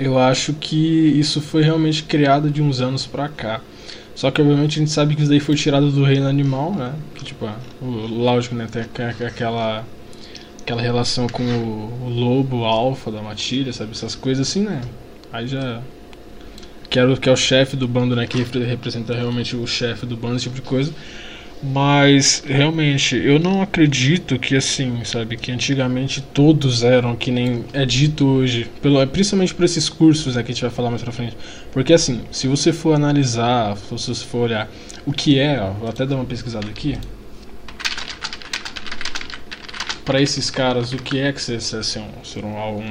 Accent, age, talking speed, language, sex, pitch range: Brazilian, 20-39, 180 wpm, Portuguese, male, 120-145 Hz